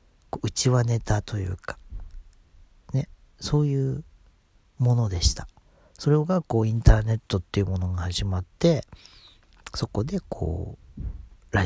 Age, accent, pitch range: 40-59, native, 85-120 Hz